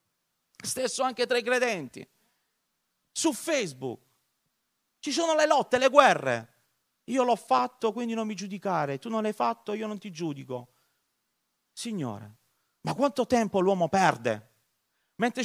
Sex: male